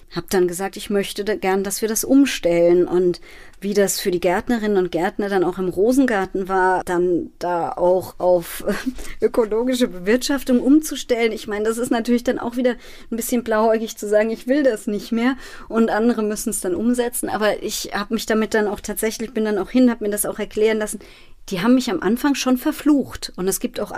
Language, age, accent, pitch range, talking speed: German, 30-49, German, 190-235 Hz, 210 wpm